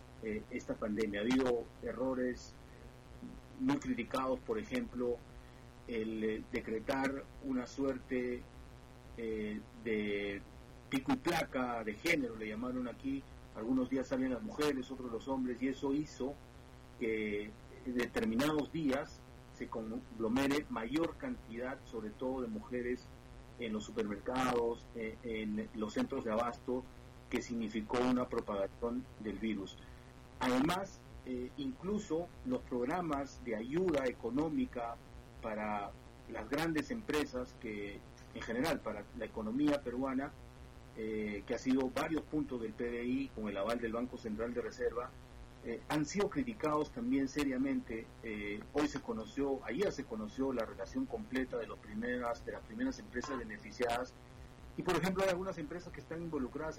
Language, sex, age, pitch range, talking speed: Spanish, male, 40-59, 115-145 Hz, 140 wpm